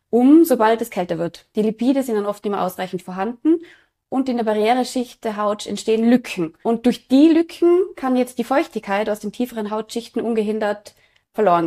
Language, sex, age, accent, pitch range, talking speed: German, female, 20-39, German, 190-245 Hz, 185 wpm